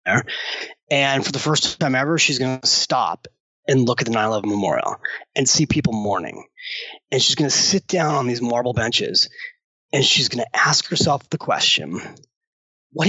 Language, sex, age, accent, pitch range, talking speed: English, male, 30-49, American, 140-190 Hz, 190 wpm